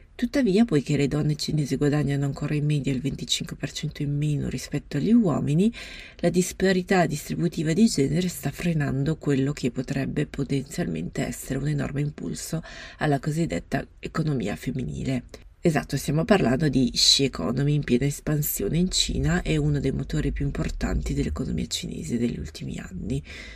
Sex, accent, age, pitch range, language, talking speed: female, native, 30-49, 135-180 Hz, Italian, 145 wpm